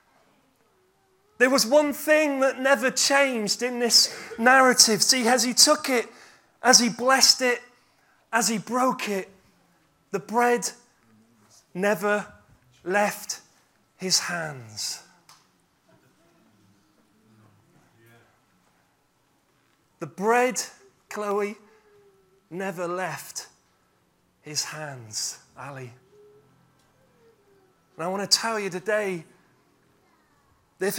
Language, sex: English, male